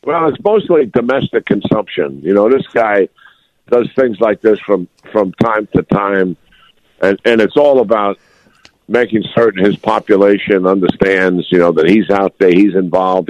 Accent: American